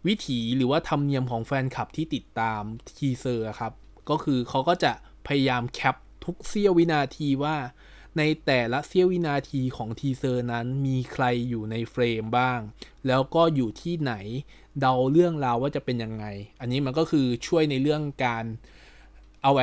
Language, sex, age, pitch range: Thai, male, 20-39, 120-150 Hz